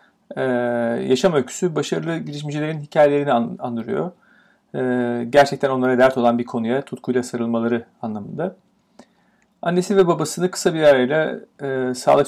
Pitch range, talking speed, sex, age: 125-170 Hz, 125 wpm, male, 40-59